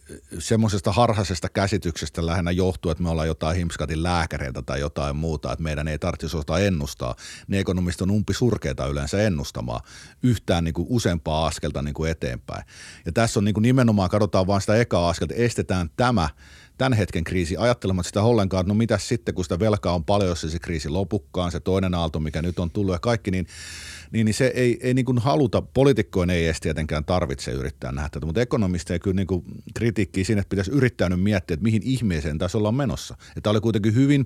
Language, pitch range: Finnish, 80-110 Hz